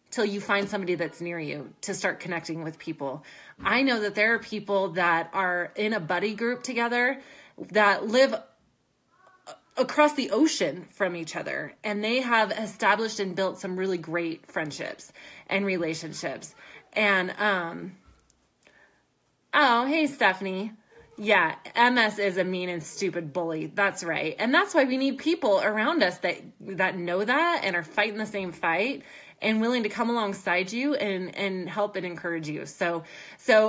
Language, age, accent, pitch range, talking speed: English, 20-39, American, 180-235 Hz, 165 wpm